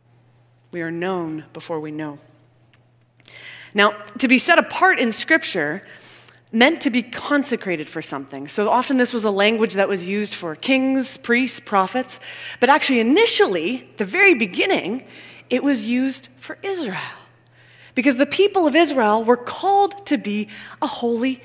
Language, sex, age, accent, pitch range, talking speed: English, female, 20-39, American, 190-305 Hz, 150 wpm